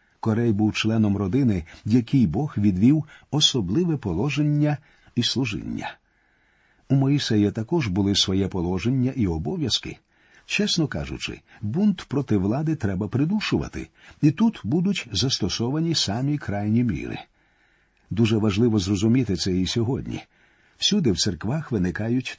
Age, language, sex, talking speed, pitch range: 50-69, Ukrainian, male, 115 wpm, 105-145 Hz